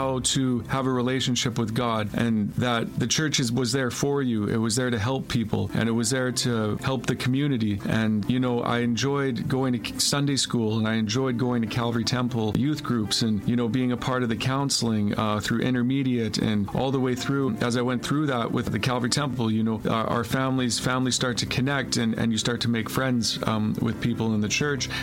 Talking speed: 225 wpm